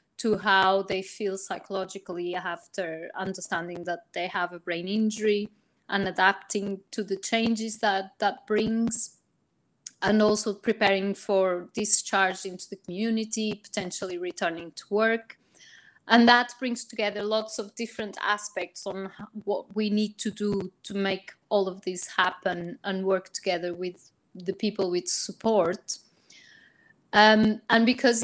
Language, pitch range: English, 190-225 Hz